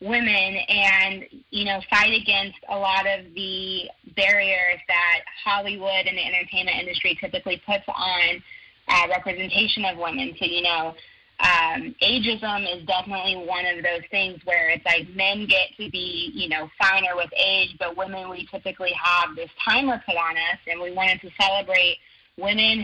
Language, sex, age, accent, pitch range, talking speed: English, female, 20-39, American, 180-210 Hz, 165 wpm